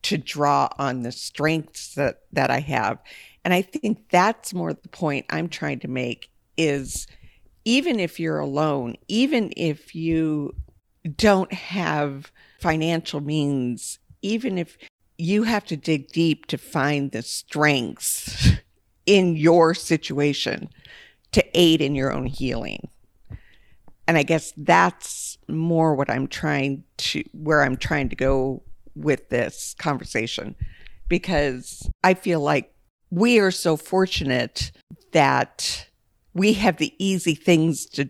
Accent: American